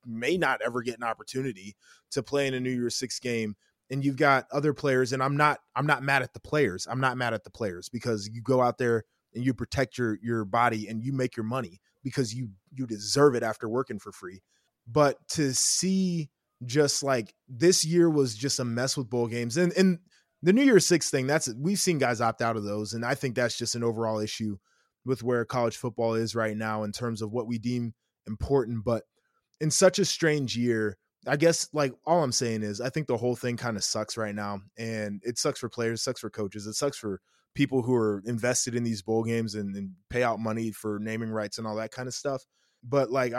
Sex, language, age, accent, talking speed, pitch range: male, English, 20-39, American, 235 wpm, 110-135 Hz